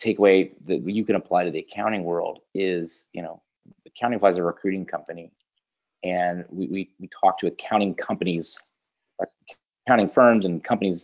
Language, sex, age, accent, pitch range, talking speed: English, male, 30-49, American, 90-110 Hz, 160 wpm